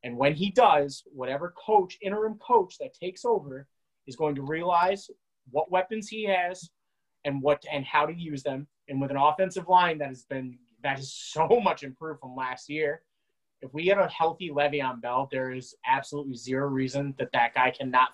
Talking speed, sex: 195 wpm, male